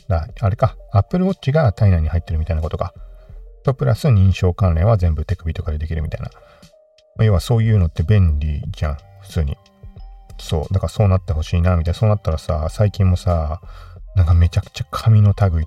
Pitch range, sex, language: 85-110 Hz, male, Japanese